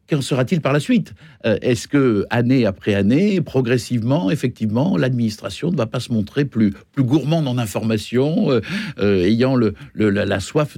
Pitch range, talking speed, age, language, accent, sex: 110-140 Hz, 180 wpm, 60-79, French, French, male